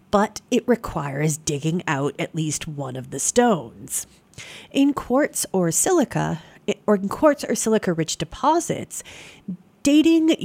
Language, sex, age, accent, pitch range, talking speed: English, female, 40-59, American, 155-210 Hz, 125 wpm